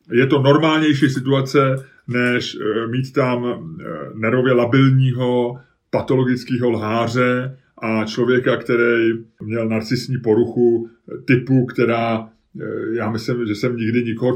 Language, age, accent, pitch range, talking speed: Czech, 30-49, native, 120-140 Hz, 105 wpm